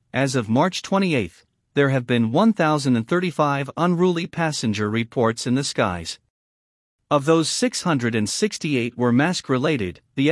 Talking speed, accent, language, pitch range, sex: 120 wpm, American, English, 115-180 Hz, male